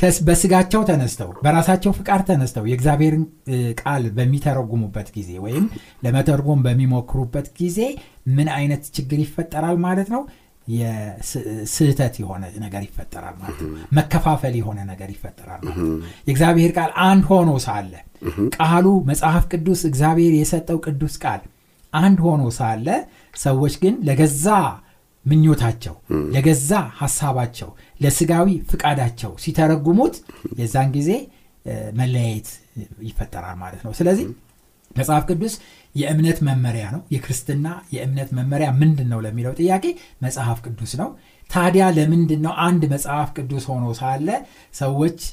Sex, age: male, 60-79